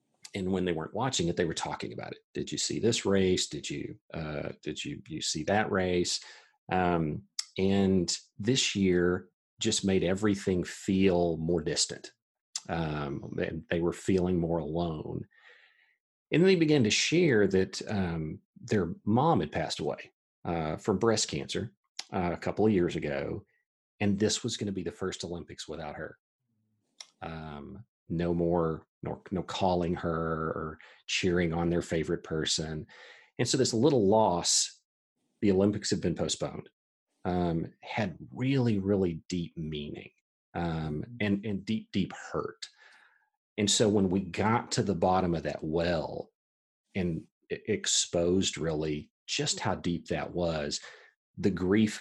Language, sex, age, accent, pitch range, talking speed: English, male, 40-59, American, 85-105 Hz, 150 wpm